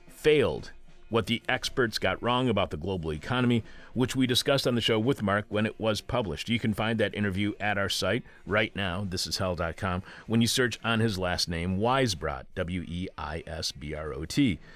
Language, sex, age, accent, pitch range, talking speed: English, male, 40-59, American, 95-115 Hz, 180 wpm